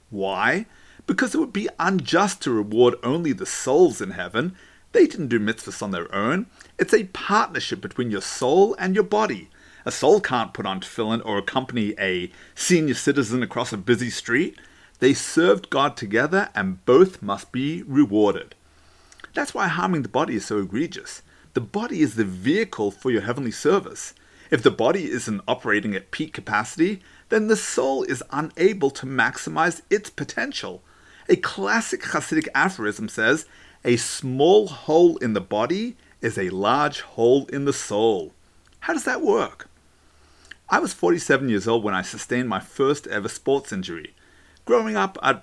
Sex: male